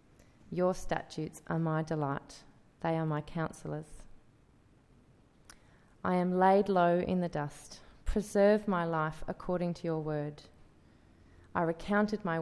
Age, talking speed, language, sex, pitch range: 30-49, 125 wpm, English, female, 155-190 Hz